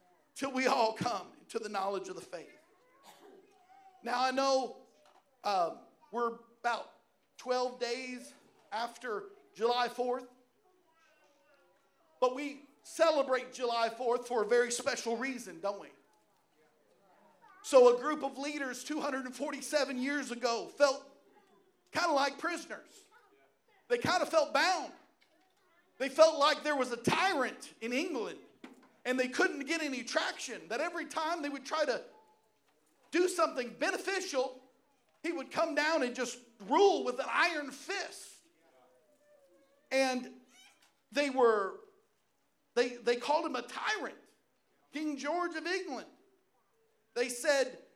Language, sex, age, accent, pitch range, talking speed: English, male, 50-69, American, 250-335 Hz, 130 wpm